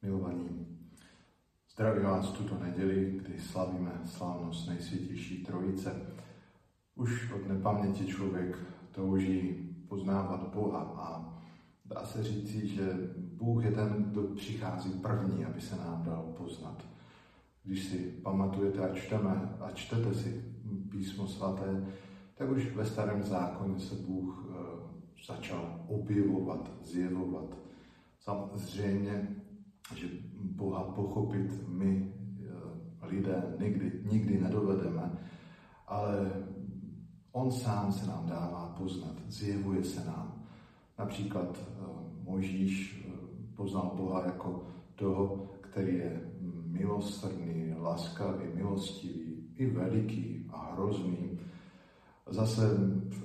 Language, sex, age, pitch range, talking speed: Slovak, male, 50-69, 90-100 Hz, 100 wpm